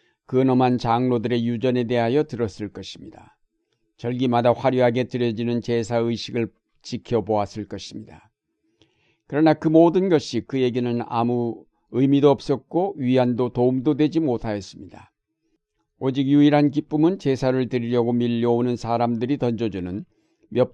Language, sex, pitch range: Korean, male, 115-135 Hz